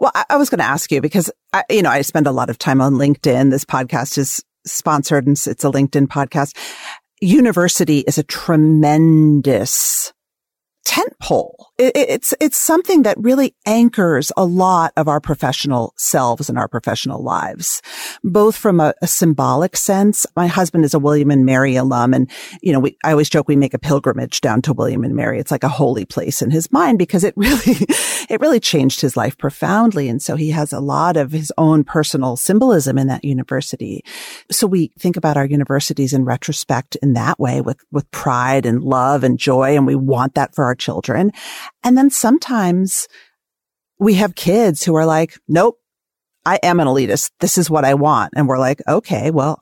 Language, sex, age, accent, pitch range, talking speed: English, female, 40-59, American, 140-205 Hz, 195 wpm